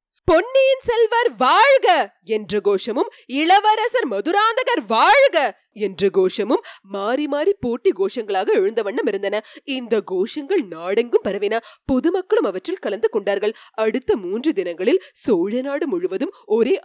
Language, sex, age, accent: Tamil, female, 20-39, native